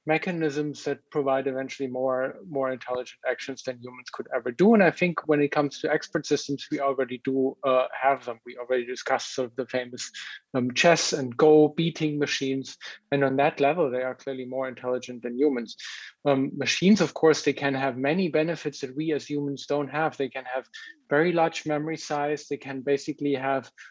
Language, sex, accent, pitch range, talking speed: English, male, German, 135-155 Hz, 195 wpm